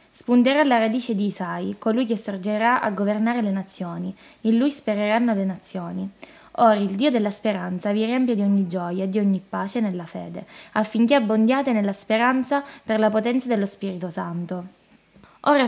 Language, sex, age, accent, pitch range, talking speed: Italian, female, 10-29, native, 200-250 Hz, 170 wpm